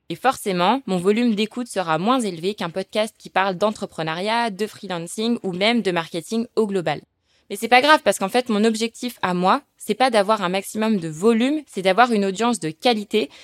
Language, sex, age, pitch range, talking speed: French, female, 20-39, 195-240 Hz, 200 wpm